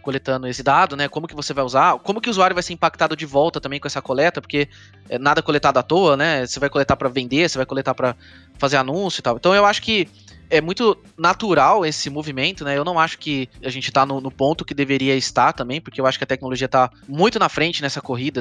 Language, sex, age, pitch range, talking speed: Portuguese, male, 20-39, 130-165 Hz, 255 wpm